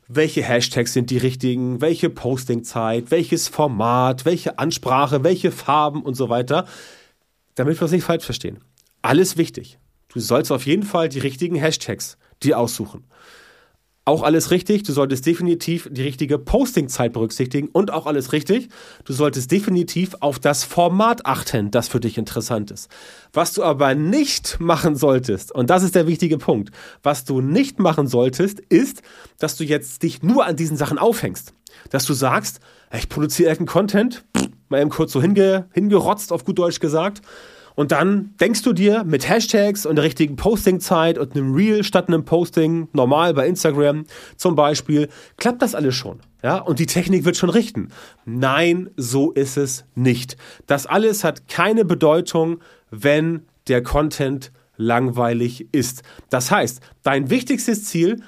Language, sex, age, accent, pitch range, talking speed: German, male, 30-49, German, 130-180 Hz, 160 wpm